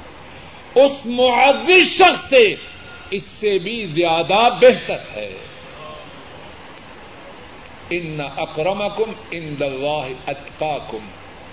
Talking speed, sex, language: 75 wpm, male, Urdu